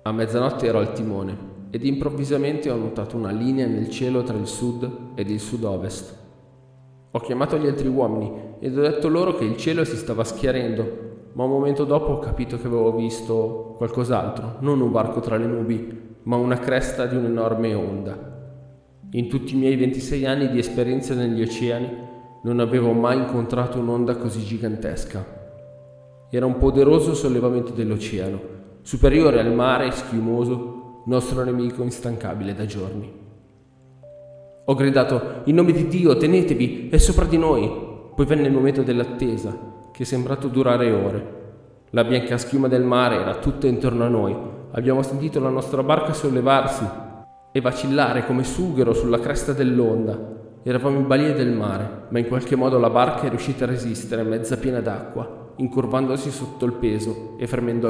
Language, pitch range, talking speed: Italian, 115-130 Hz, 160 wpm